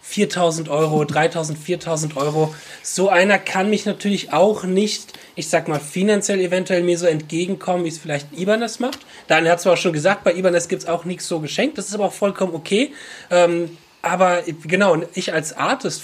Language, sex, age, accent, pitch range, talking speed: German, male, 30-49, German, 150-185 Hz, 190 wpm